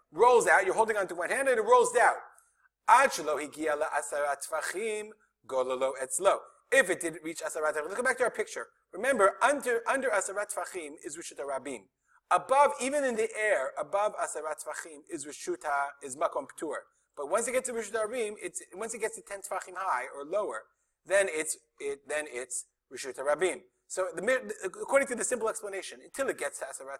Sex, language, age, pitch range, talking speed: male, English, 30-49, 155-255 Hz, 185 wpm